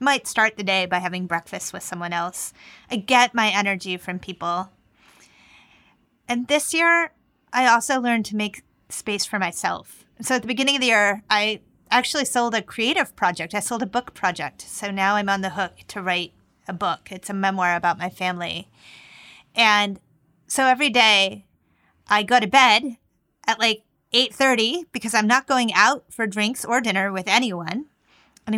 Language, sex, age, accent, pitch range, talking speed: English, female, 30-49, American, 195-245 Hz, 175 wpm